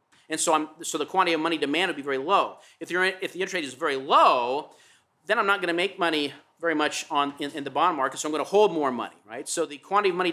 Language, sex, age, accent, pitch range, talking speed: English, male, 50-69, American, 160-225 Hz, 295 wpm